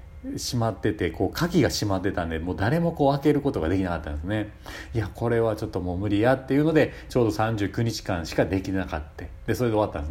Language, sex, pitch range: Japanese, male, 90-125 Hz